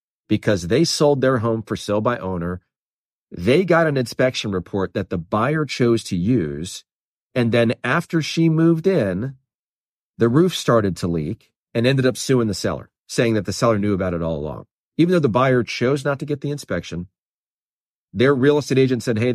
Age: 40-59